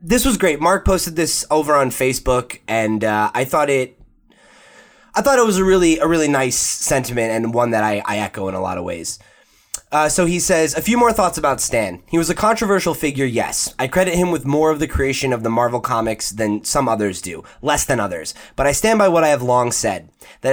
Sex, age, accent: male, 20-39, American